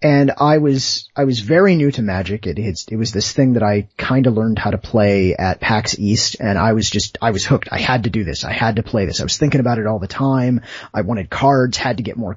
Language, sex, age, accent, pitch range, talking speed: English, male, 30-49, American, 95-130 Hz, 280 wpm